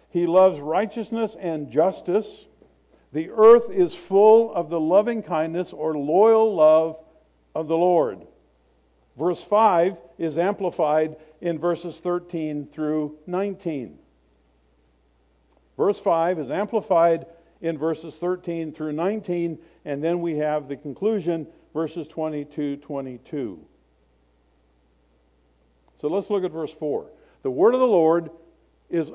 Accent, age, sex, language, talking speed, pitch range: American, 60-79, male, English, 115 wpm, 145-195 Hz